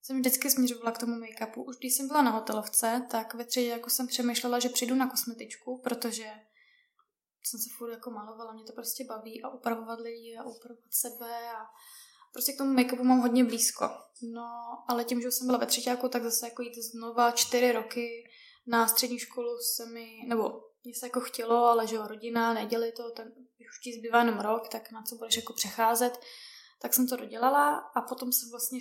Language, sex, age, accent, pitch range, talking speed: Czech, female, 20-39, native, 235-255 Hz, 200 wpm